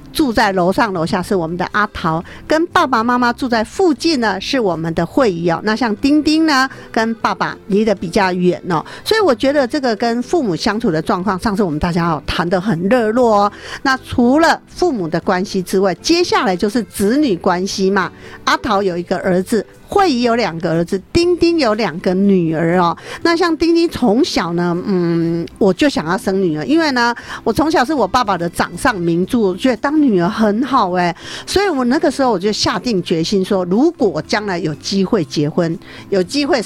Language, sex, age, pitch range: Chinese, female, 50-69, 180-260 Hz